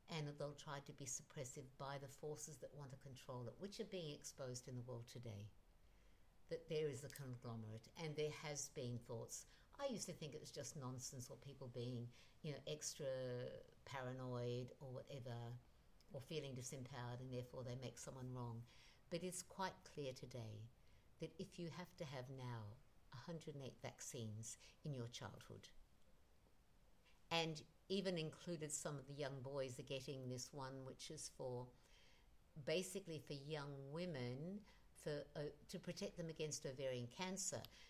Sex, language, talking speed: female, English, 160 wpm